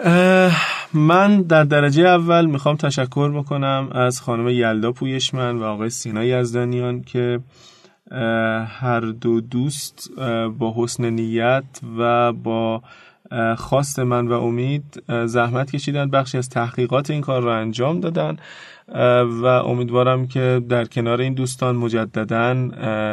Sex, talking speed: male, 120 wpm